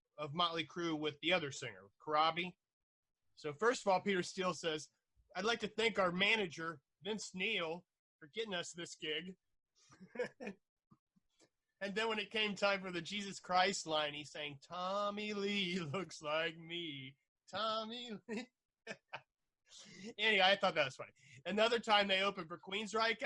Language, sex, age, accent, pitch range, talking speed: English, male, 30-49, American, 155-200 Hz, 155 wpm